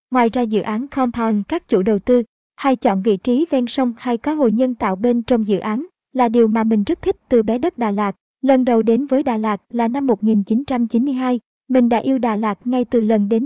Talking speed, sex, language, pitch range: 235 wpm, male, Vietnamese, 220-260 Hz